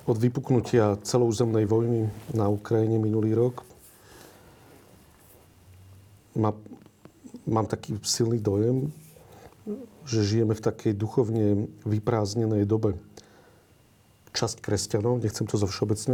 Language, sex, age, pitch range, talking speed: Slovak, male, 40-59, 105-115 Hz, 95 wpm